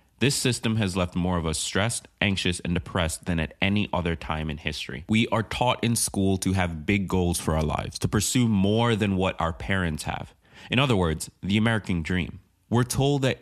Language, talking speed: English, 210 wpm